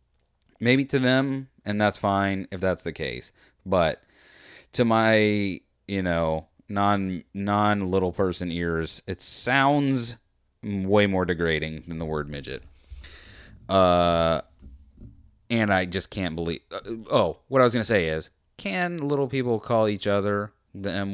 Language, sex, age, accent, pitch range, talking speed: English, male, 30-49, American, 85-115 Hz, 150 wpm